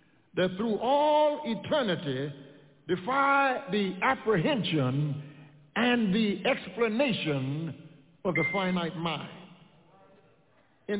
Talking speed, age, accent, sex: 80 wpm, 60-79, American, male